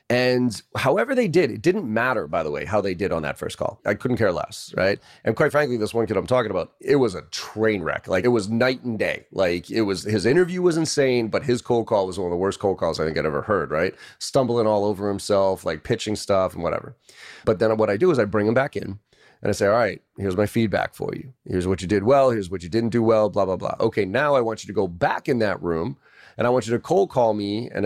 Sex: male